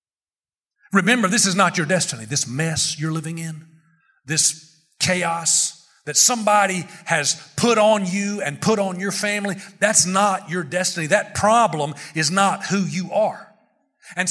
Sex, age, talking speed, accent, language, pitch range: male, 40-59, 150 wpm, American, English, 185-265 Hz